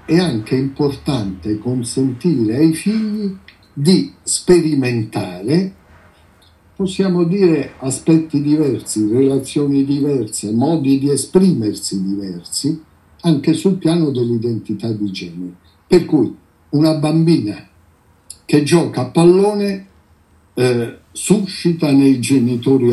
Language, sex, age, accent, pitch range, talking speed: Italian, male, 60-79, native, 105-160 Hz, 95 wpm